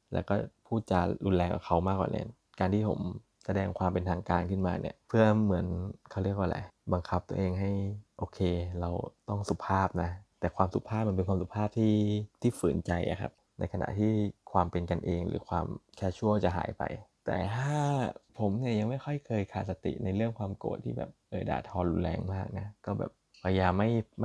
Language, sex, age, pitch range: Thai, male, 20-39, 90-110 Hz